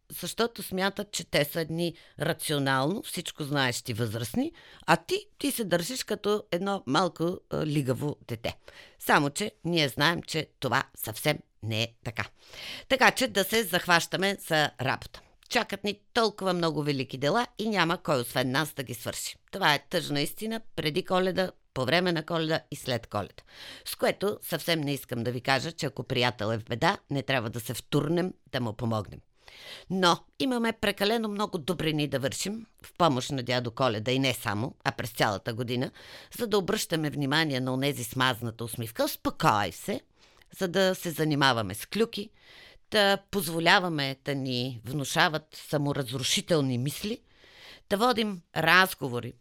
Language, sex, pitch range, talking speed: Bulgarian, female, 130-185 Hz, 160 wpm